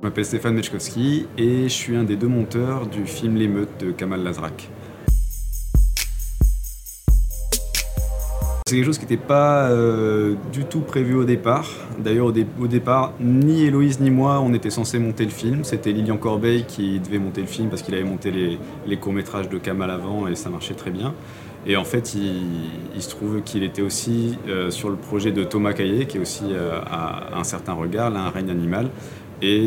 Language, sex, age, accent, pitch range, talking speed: French, male, 30-49, French, 95-120 Hz, 195 wpm